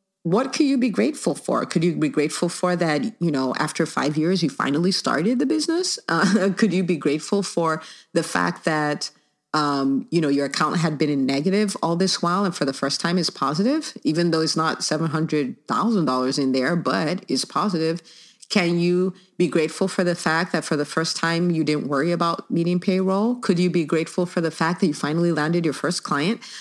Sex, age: female, 40-59